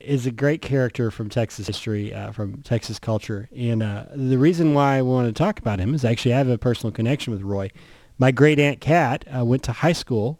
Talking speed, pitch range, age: 230 wpm, 110-130 Hz, 30-49